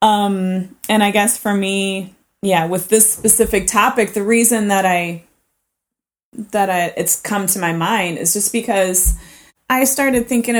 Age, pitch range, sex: 20-39, 170-215 Hz, female